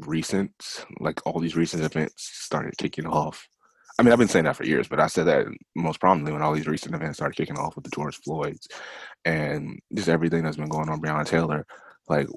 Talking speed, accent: 220 wpm, American